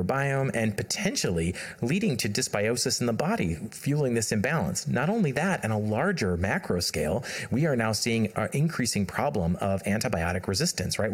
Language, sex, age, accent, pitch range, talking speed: English, male, 30-49, American, 100-140 Hz, 165 wpm